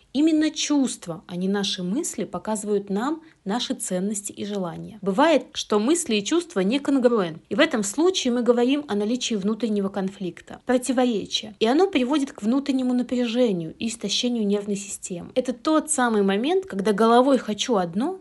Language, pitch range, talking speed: Russian, 200-270 Hz, 160 wpm